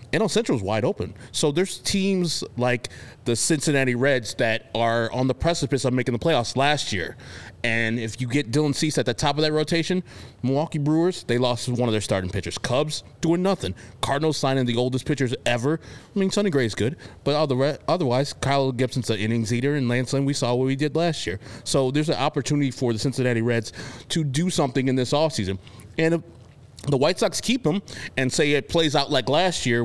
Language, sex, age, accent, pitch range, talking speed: English, male, 30-49, American, 120-155 Hz, 210 wpm